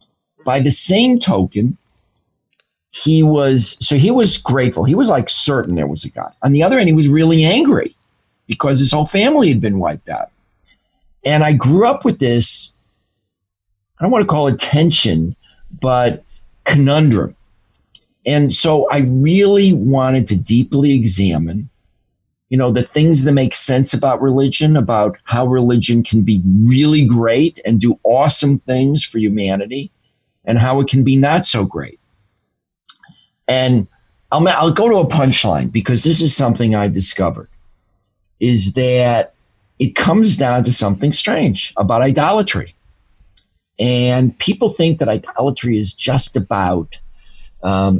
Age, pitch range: 50-69, 100-145 Hz